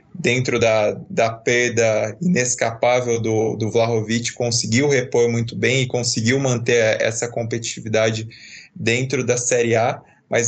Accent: Brazilian